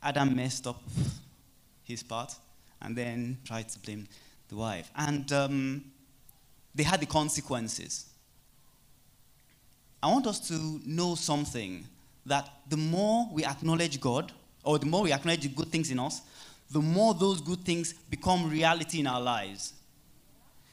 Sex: male